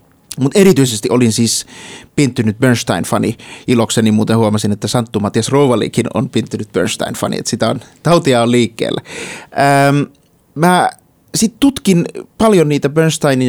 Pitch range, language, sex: 115-175 Hz, Finnish, male